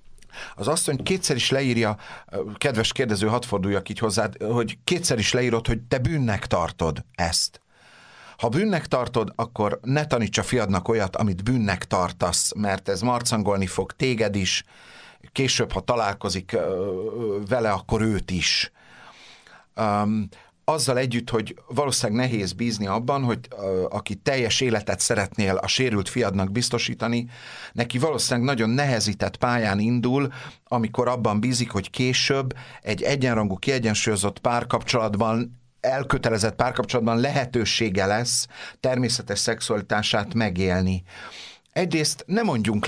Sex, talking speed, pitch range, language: male, 120 wpm, 100-130 Hz, Hungarian